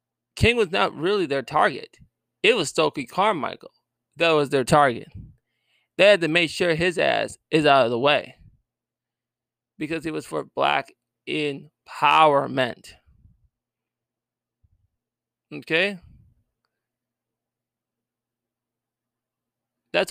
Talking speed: 100 wpm